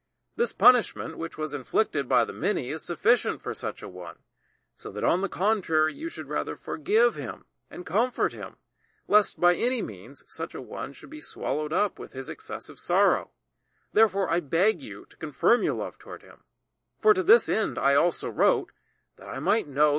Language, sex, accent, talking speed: English, male, American, 190 wpm